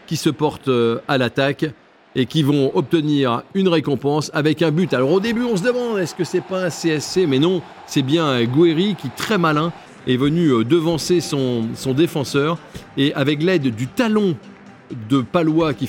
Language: French